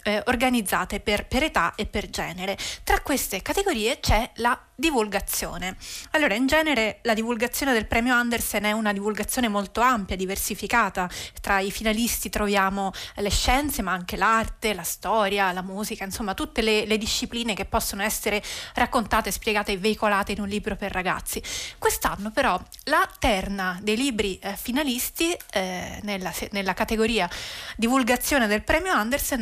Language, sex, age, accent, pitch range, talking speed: Italian, female, 30-49, native, 210-260 Hz, 150 wpm